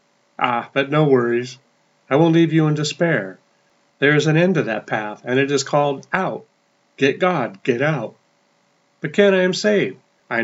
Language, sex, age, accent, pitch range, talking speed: English, male, 40-59, American, 125-160 Hz, 185 wpm